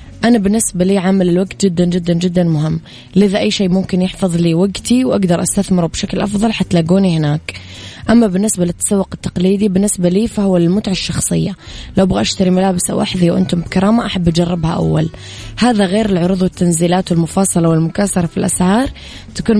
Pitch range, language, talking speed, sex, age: 165-195 Hz, Arabic, 155 wpm, female, 20-39